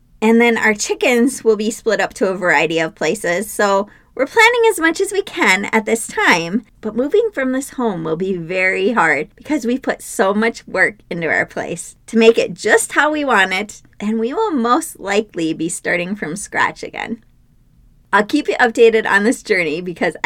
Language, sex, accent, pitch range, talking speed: English, female, American, 200-250 Hz, 200 wpm